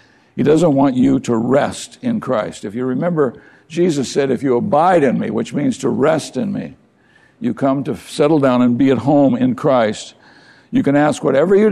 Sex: male